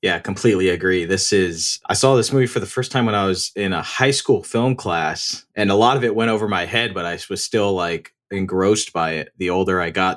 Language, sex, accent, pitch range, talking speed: English, male, American, 95-115 Hz, 255 wpm